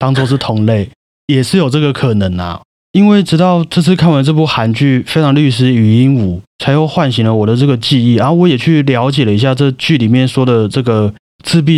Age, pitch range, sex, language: 30-49, 110-140 Hz, male, Chinese